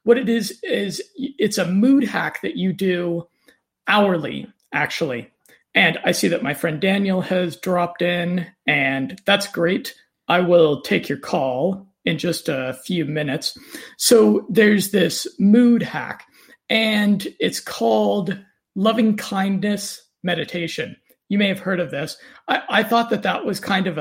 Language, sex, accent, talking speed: English, male, American, 150 wpm